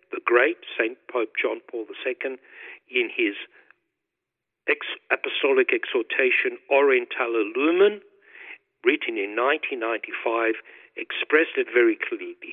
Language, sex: English, male